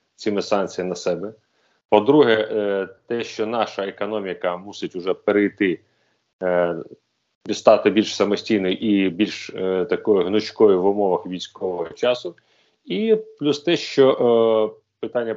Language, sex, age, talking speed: Ukrainian, male, 30-49, 110 wpm